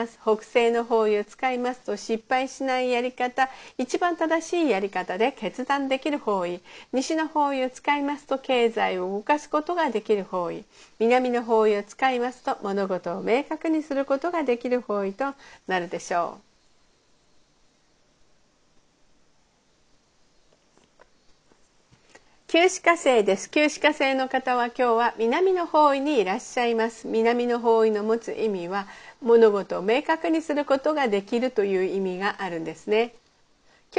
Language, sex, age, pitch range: Japanese, female, 50-69, 220-295 Hz